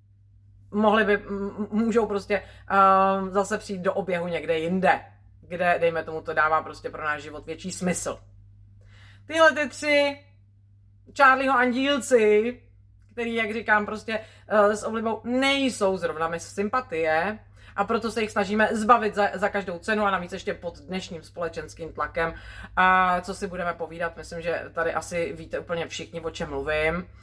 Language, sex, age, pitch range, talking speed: Czech, female, 30-49, 165-230 Hz, 155 wpm